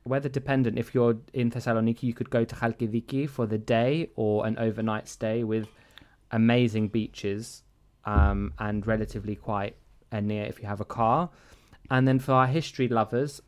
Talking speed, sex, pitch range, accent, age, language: 170 wpm, male, 110-130 Hz, British, 20-39, Greek